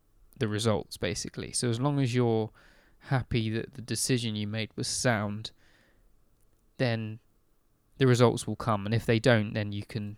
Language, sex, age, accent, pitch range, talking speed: English, male, 20-39, British, 110-125 Hz, 165 wpm